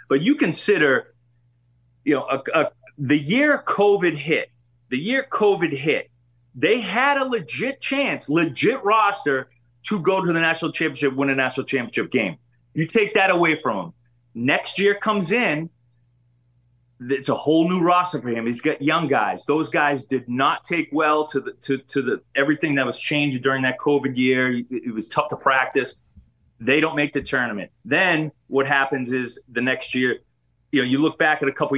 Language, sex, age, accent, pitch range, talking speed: English, male, 30-49, American, 130-190 Hz, 185 wpm